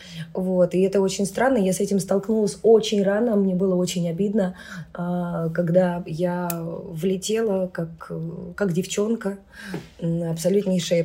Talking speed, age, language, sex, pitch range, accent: 120 wpm, 20-39, Russian, female, 170-205 Hz, native